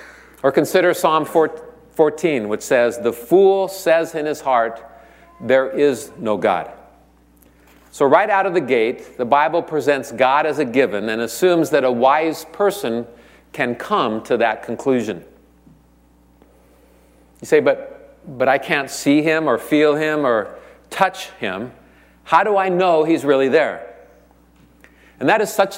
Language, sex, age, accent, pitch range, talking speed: English, male, 50-69, American, 110-160 Hz, 150 wpm